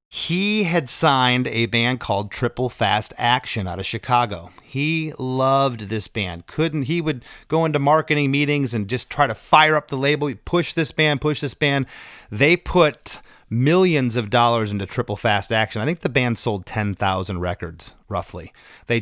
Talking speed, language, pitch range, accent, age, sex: 175 wpm, English, 110-140 Hz, American, 30-49, male